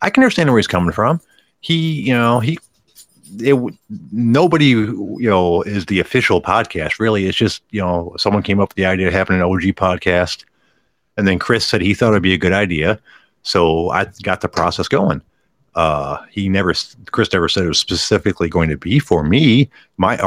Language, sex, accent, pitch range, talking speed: English, male, American, 90-115 Hz, 195 wpm